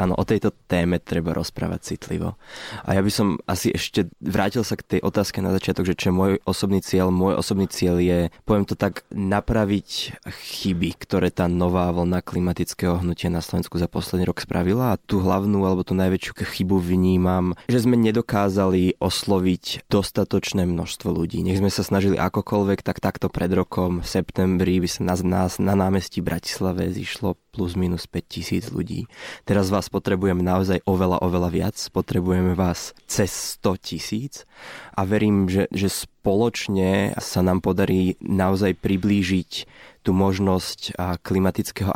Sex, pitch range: male, 90-100 Hz